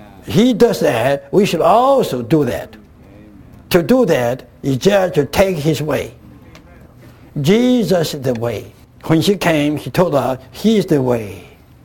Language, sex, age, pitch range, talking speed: English, male, 60-79, 125-175 Hz, 155 wpm